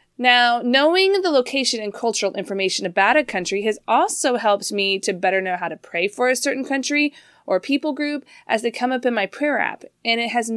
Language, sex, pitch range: English, female, 185-255 Hz